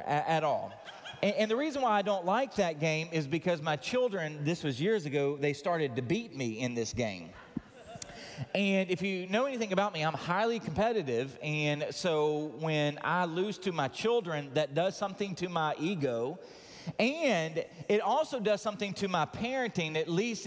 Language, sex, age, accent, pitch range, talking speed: English, male, 30-49, American, 155-220 Hz, 180 wpm